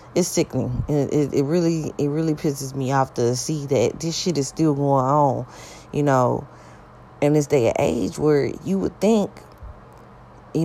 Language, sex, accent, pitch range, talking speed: English, female, American, 135-175 Hz, 180 wpm